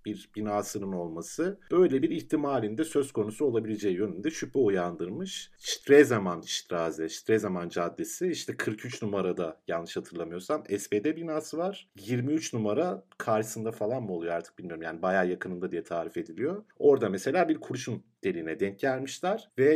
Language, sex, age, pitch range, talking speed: Turkish, male, 50-69, 100-145 Hz, 145 wpm